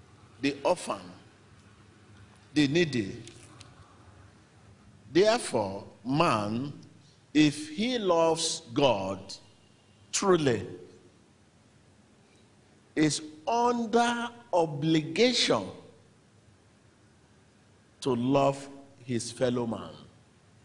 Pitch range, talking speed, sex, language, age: 105-150 Hz, 55 wpm, male, English, 50-69